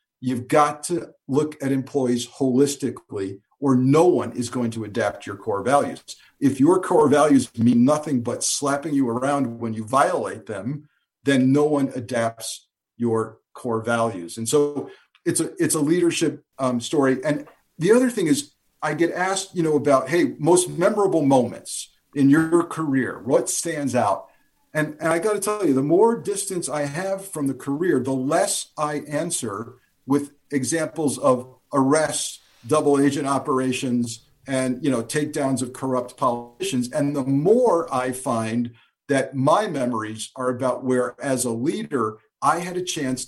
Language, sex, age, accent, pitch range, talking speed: English, male, 50-69, American, 120-150 Hz, 165 wpm